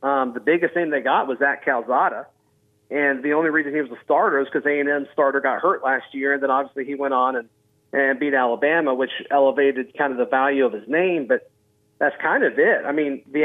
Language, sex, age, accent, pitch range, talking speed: English, male, 40-59, American, 135-160 Hz, 235 wpm